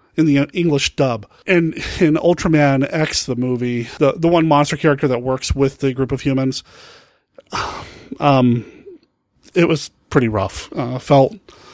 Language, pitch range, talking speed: English, 130-160 Hz, 150 wpm